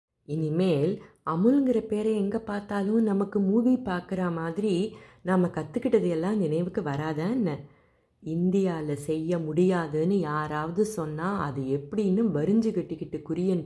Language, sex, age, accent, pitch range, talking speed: Tamil, female, 30-49, native, 150-205 Hz, 105 wpm